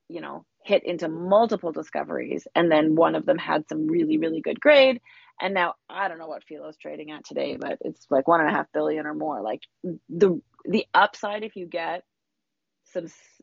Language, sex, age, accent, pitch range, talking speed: English, female, 30-49, American, 155-195 Hz, 200 wpm